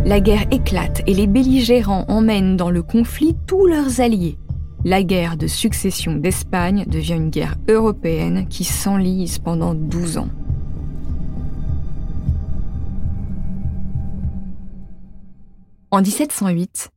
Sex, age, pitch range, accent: female, 20-39, 170-225 Hz, French